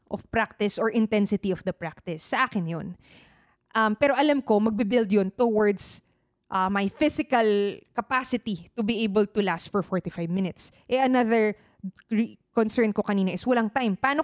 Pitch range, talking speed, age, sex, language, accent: 200-275 Hz, 160 wpm, 20-39, female, Filipino, native